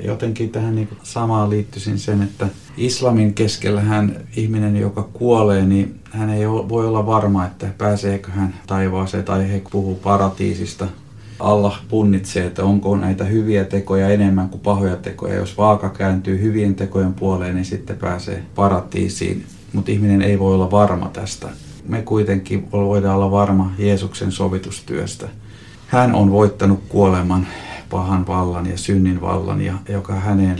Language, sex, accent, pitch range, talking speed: Finnish, male, native, 95-105 Hz, 145 wpm